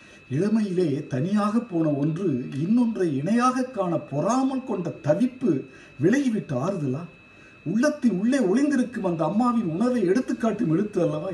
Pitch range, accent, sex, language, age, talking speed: 135-210 Hz, native, male, Tamil, 50-69, 110 wpm